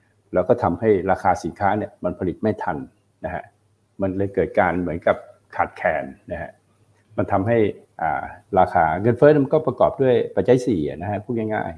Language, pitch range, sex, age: Thai, 100-120 Hz, male, 60-79